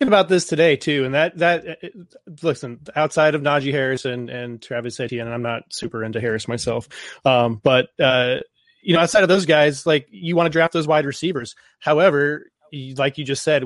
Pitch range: 130-160 Hz